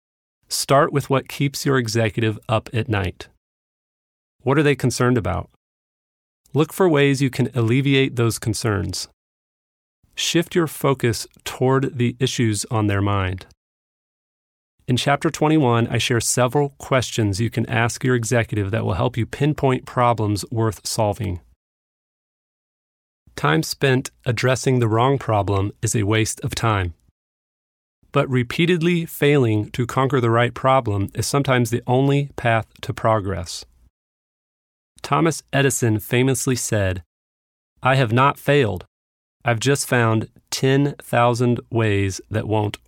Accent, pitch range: American, 100-130 Hz